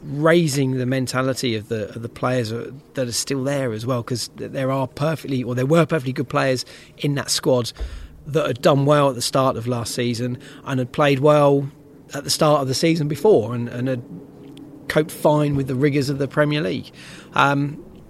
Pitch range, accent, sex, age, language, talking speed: 125-145 Hz, British, male, 30-49, English, 200 wpm